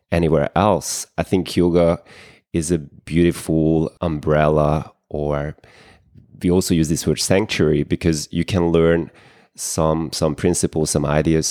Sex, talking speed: male, 130 wpm